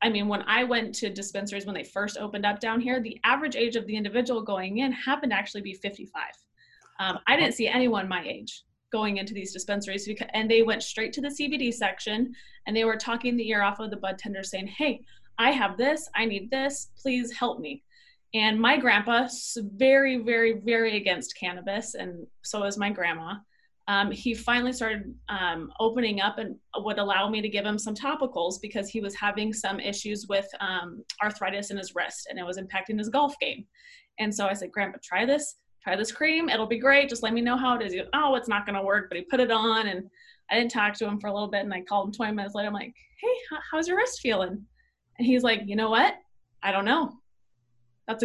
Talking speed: 225 wpm